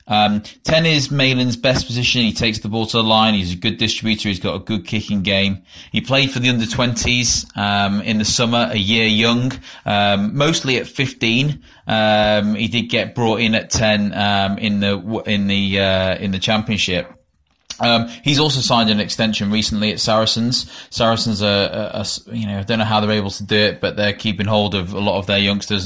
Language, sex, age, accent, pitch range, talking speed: English, male, 20-39, British, 100-115 Hz, 210 wpm